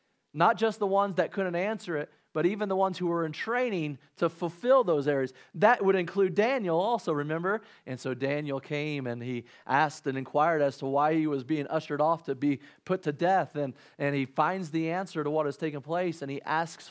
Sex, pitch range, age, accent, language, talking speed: male, 135-185 Hz, 40-59, American, English, 220 wpm